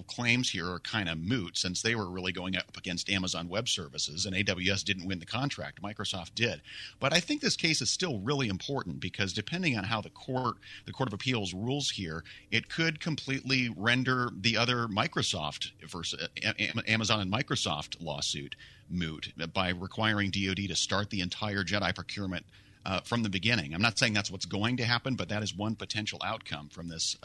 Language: English